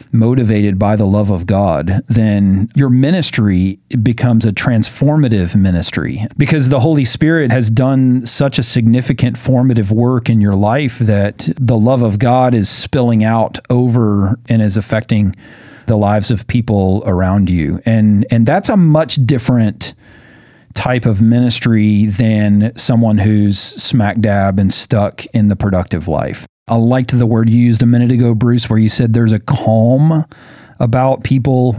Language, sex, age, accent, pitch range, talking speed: English, male, 40-59, American, 105-130 Hz, 155 wpm